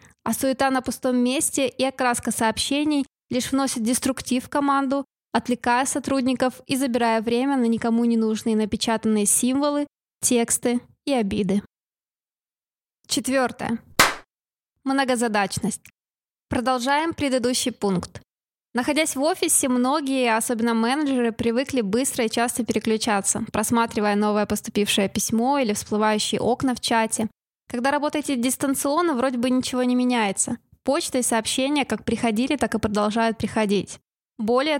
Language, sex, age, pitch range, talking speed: Russian, female, 20-39, 225-265 Hz, 120 wpm